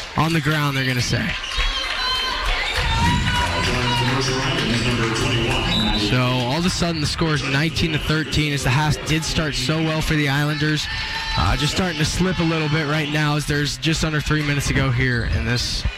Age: 10-29